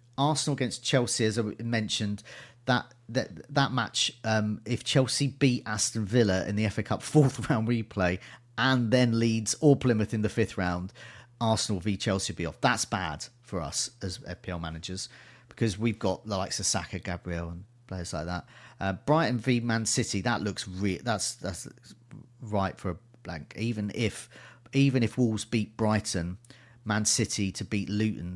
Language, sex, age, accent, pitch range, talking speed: English, male, 40-59, British, 105-125 Hz, 175 wpm